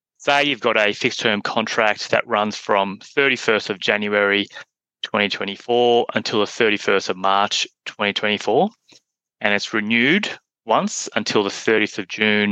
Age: 20-39